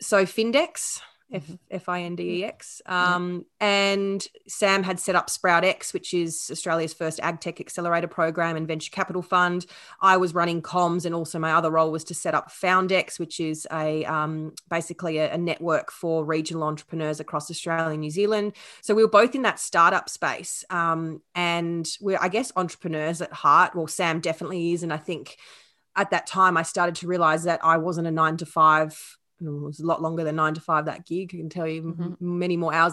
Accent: Australian